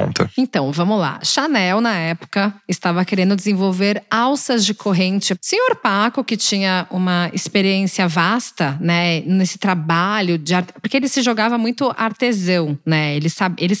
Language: Portuguese